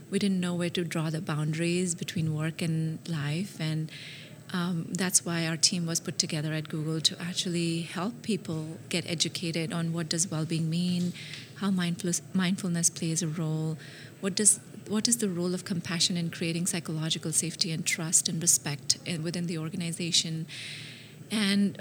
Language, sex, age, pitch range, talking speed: English, female, 30-49, 165-190 Hz, 160 wpm